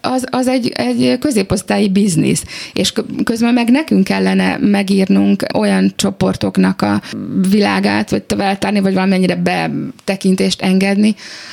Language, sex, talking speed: Hungarian, female, 125 wpm